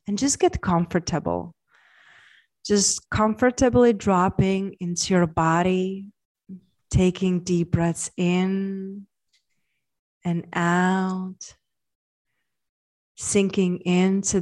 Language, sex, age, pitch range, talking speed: English, female, 30-49, 170-200 Hz, 75 wpm